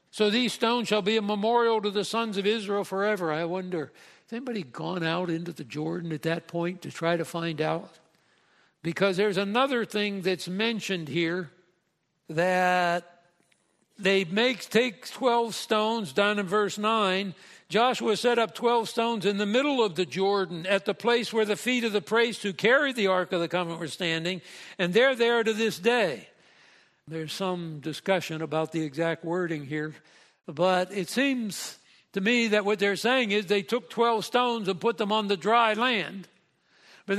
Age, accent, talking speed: 60-79, American, 180 wpm